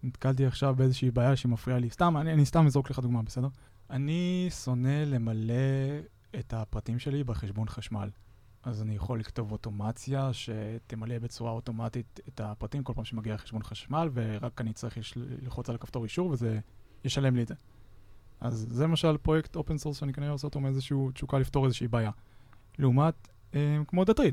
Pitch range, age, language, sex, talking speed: 115-140 Hz, 20-39, Hebrew, male, 170 wpm